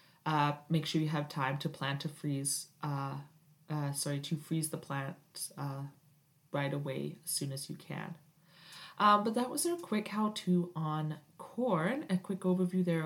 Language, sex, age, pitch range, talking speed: English, female, 20-39, 155-185 Hz, 180 wpm